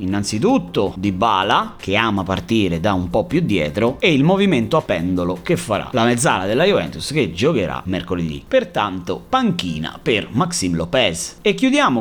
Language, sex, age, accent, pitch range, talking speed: Italian, male, 30-49, native, 105-180 Hz, 160 wpm